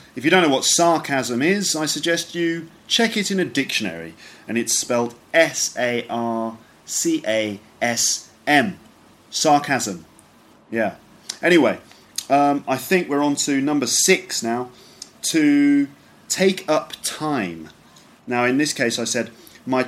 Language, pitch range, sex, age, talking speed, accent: English, 110-145 Hz, male, 30-49, 125 wpm, British